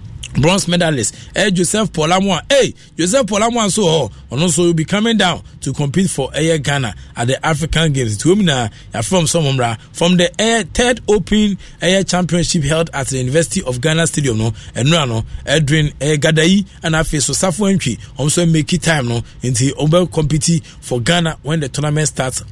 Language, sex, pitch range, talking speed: English, male, 135-175 Hz, 165 wpm